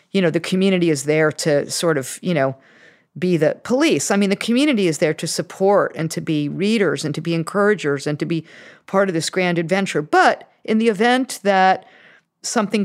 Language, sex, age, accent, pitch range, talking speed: English, female, 50-69, American, 180-235 Hz, 205 wpm